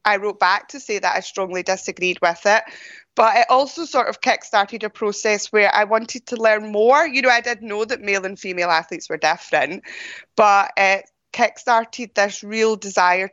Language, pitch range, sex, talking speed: English, 190-245 Hz, female, 195 wpm